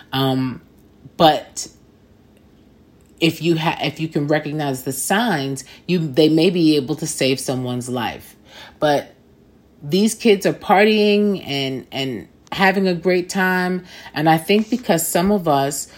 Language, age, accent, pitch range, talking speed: English, 30-49, American, 140-180 Hz, 145 wpm